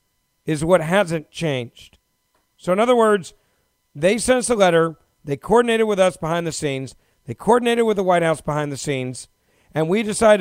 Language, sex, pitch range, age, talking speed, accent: English, male, 155-210 Hz, 50-69, 185 wpm, American